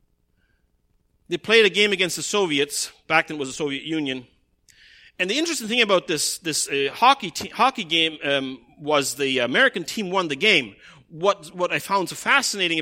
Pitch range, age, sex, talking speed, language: 150-195 Hz, 40-59, male, 185 wpm, English